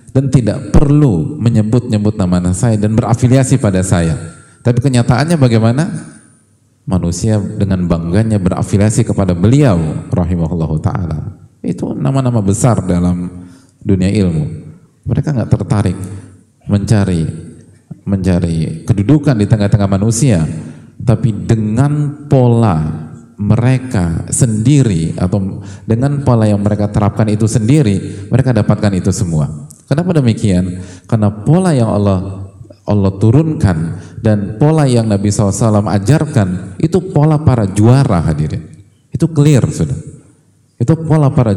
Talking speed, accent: 115 wpm, Indonesian